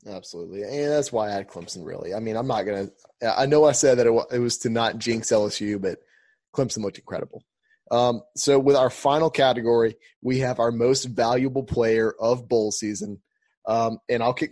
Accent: American